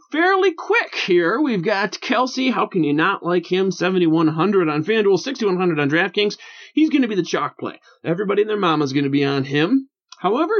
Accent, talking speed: American, 200 wpm